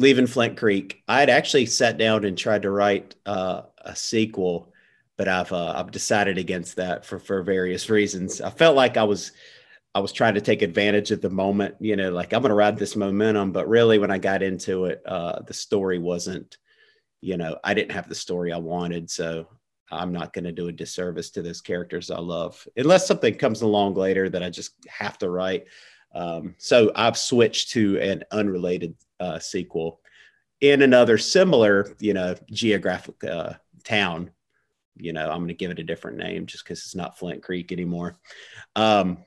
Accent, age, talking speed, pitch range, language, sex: American, 30-49, 195 wpm, 90-110 Hz, English, male